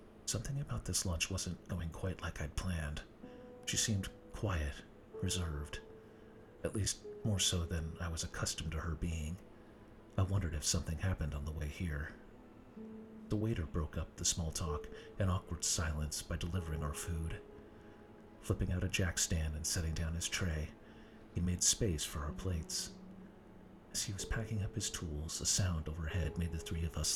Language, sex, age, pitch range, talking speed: English, male, 40-59, 80-105 Hz, 175 wpm